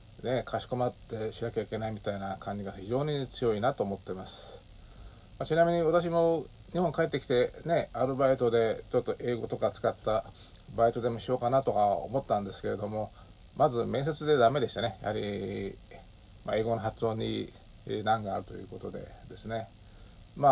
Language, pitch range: Japanese, 105-125 Hz